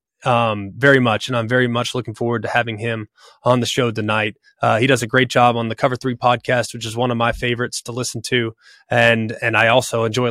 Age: 20-39